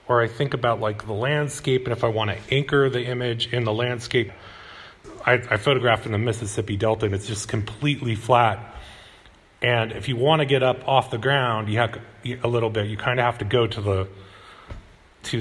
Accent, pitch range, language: American, 100-120 Hz, English